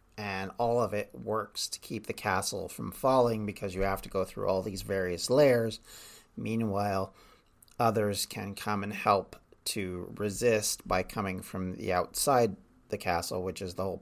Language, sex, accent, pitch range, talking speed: English, male, American, 95-115 Hz, 170 wpm